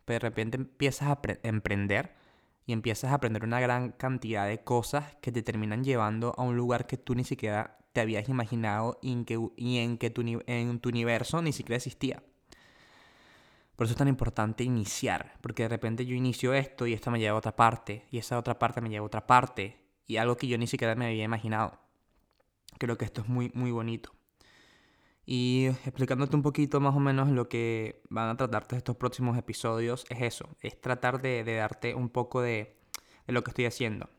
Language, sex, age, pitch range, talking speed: Spanish, male, 20-39, 115-125 Hz, 195 wpm